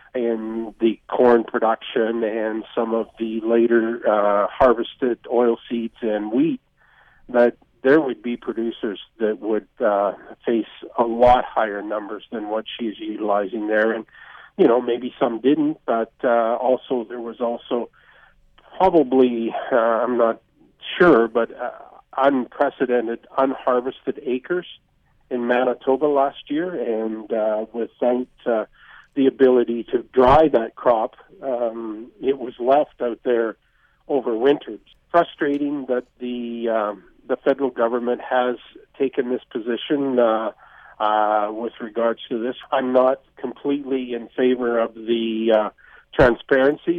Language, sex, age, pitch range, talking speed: English, male, 50-69, 115-135 Hz, 130 wpm